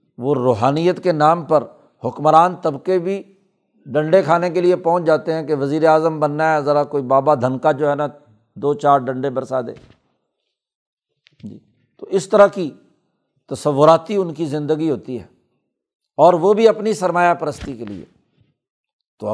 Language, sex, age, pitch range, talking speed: Urdu, male, 60-79, 145-180 Hz, 160 wpm